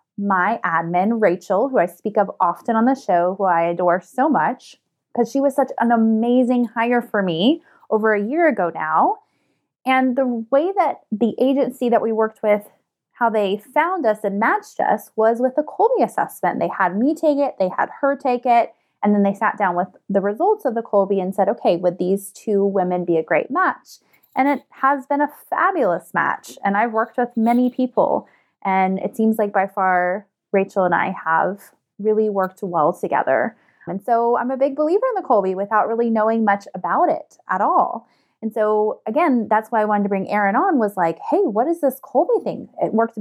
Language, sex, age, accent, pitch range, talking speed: English, female, 20-39, American, 195-260 Hz, 205 wpm